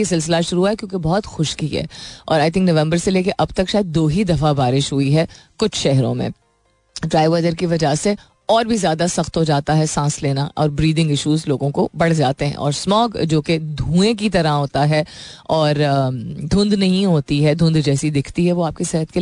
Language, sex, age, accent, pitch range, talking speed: Hindi, female, 30-49, native, 150-190 Hz, 155 wpm